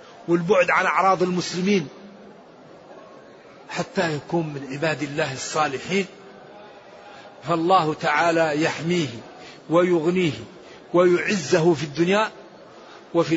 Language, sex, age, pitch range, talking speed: Arabic, male, 50-69, 160-195 Hz, 80 wpm